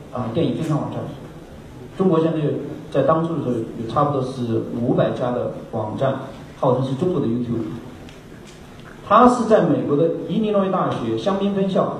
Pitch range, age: 130-165 Hz, 40-59